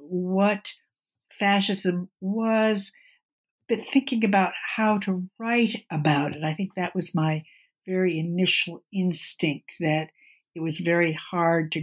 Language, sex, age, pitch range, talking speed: English, female, 60-79, 160-205 Hz, 125 wpm